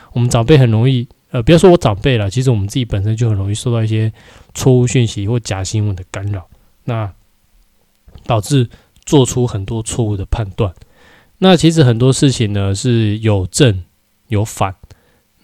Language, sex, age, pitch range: Chinese, male, 20-39, 100-125 Hz